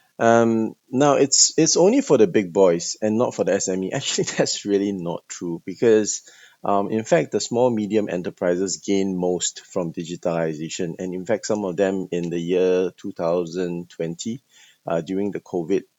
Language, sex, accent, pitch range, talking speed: English, male, Malaysian, 90-100 Hz, 170 wpm